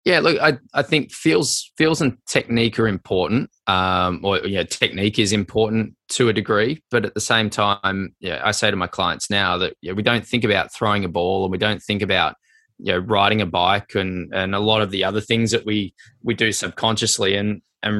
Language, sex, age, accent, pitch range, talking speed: English, male, 20-39, Australian, 95-110 Hz, 235 wpm